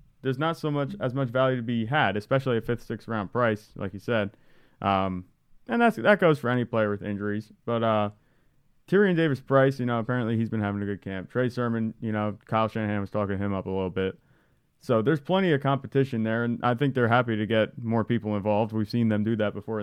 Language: English